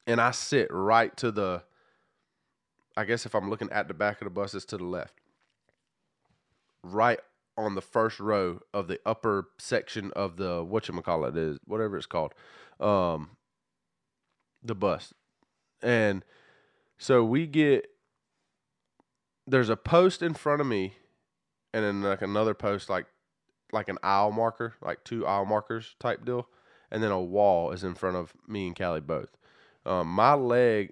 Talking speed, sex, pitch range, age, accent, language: 160 wpm, male, 100-155 Hz, 20-39, American, English